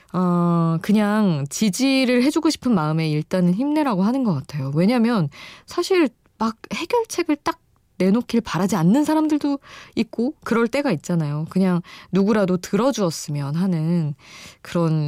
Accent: native